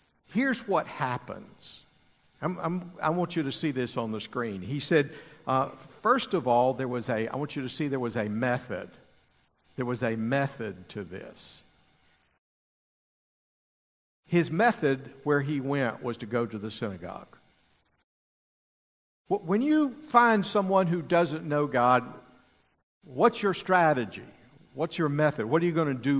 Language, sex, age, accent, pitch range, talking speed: English, male, 60-79, American, 125-170 Hz, 155 wpm